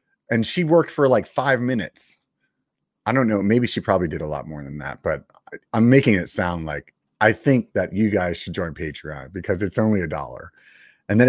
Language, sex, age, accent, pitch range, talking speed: English, male, 30-49, American, 95-130 Hz, 215 wpm